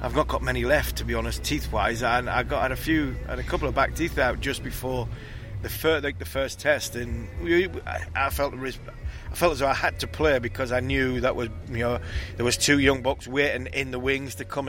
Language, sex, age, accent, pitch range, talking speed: English, male, 30-49, British, 100-135 Hz, 240 wpm